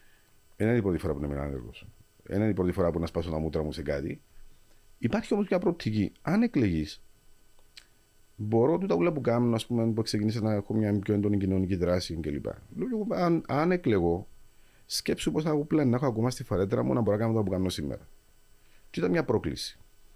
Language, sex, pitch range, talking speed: Greek, male, 90-120 Hz, 210 wpm